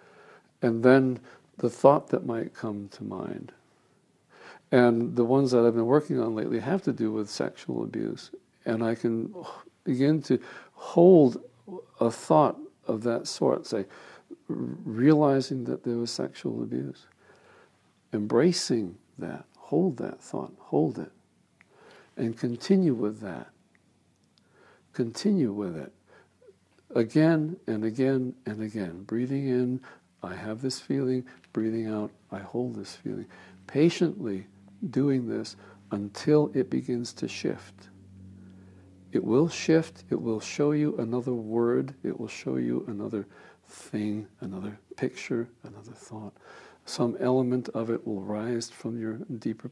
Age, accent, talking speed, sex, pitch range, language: 60-79, American, 130 wpm, male, 105-130 Hz, English